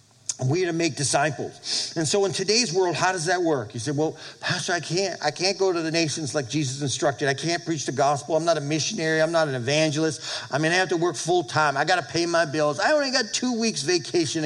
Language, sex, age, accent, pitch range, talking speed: English, male, 50-69, American, 115-170 Hz, 260 wpm